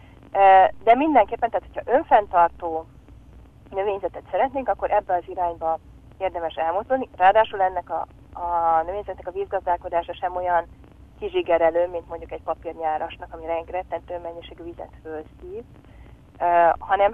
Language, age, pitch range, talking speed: Hungarian, 30-49, 165-195 Hz, 120 wpm